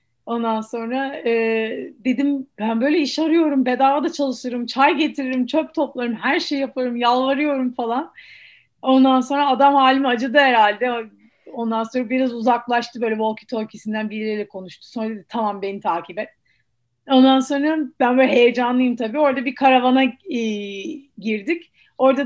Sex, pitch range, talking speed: female, 220-275 Hz, 145 wpm